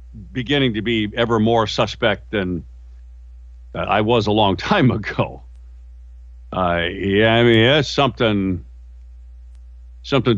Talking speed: 115 wpm